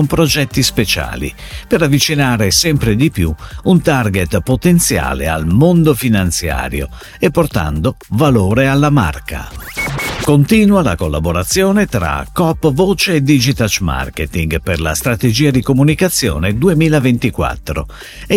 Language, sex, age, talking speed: Italian, male, 50-69, 110 wpm